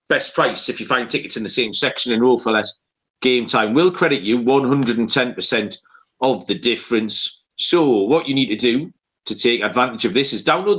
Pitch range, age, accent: 120-150 Hz, 40-59, British